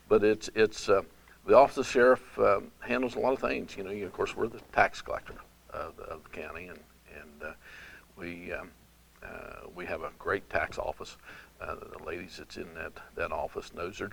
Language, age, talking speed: English, 50-69, 210 wpm